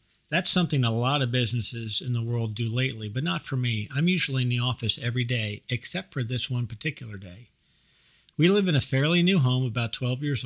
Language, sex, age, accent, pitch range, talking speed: English, male, 50-69, American, 115-150 Hz, 220 wpm